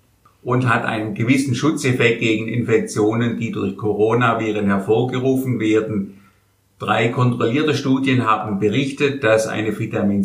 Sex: male